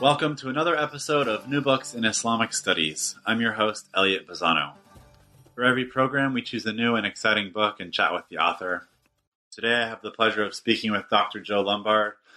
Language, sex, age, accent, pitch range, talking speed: English, male, 30-49, American, 95-115 Hz, 200 wpm